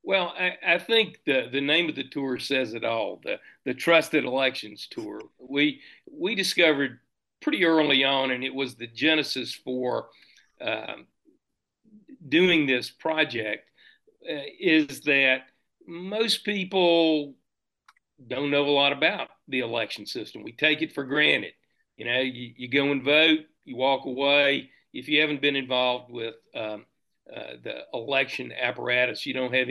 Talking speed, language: 155 wpm, English